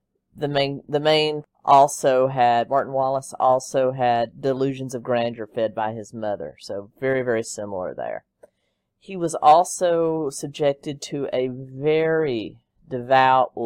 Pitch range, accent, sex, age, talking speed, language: 120-150 Hz, American, female, 40-59, 130 wpm, English